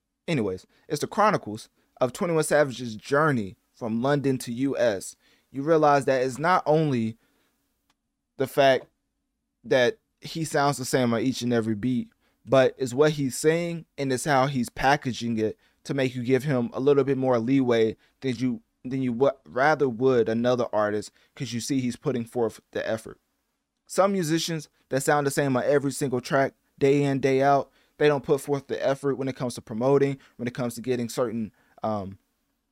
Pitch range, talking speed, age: 120-145 Hz, 185 wpm, 20-39